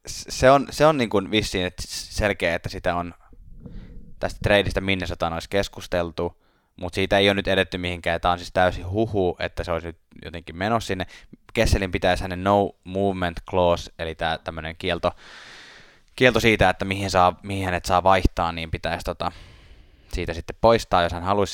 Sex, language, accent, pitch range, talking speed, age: male, Finnish, native, 85-100 Hz, 180 wpm, 10-29